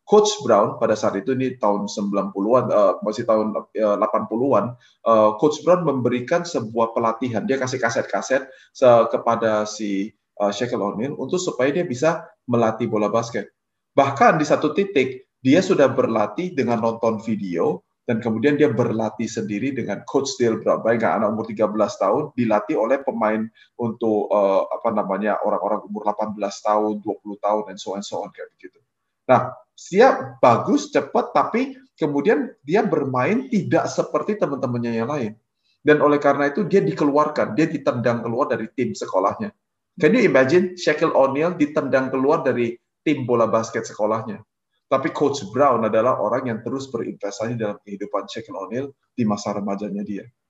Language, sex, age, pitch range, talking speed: Indonesian, male, 20-39, 110-150 Hz, 155 wpm